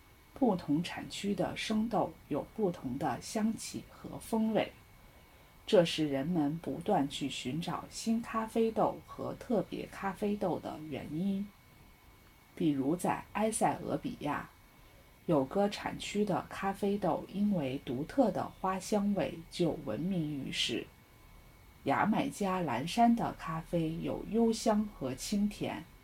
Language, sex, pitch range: English, female, 145-220 Hz